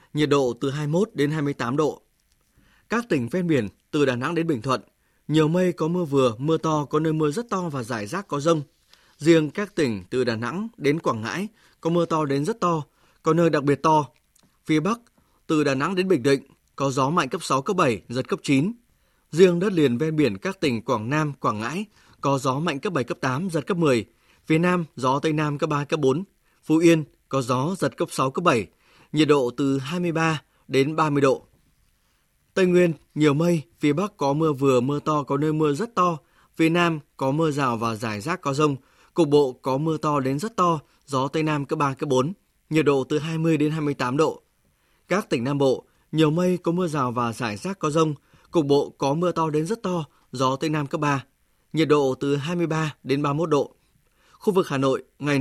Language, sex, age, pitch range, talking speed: Vietnamese, male, 20-39, 140-170 Hz, 220 wpm